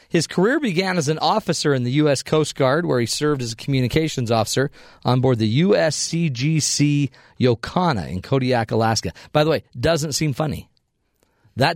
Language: English